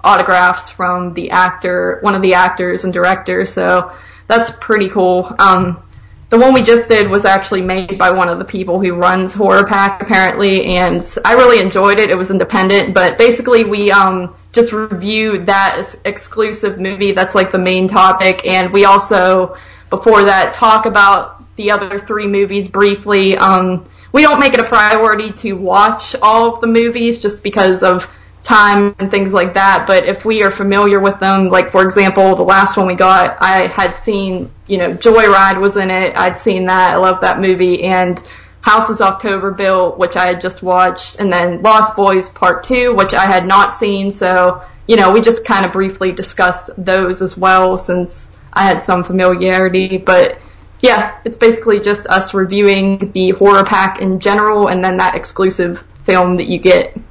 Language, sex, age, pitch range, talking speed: English, female, 20-39, 185-205 Hz, 185 wpm